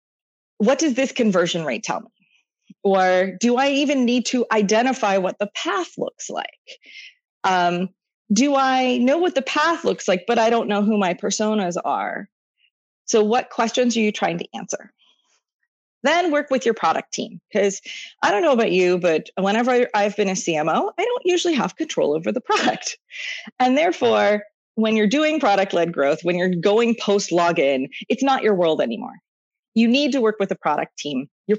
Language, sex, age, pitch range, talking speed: English, female, 30-49, 190-275 Hz, 180 wpm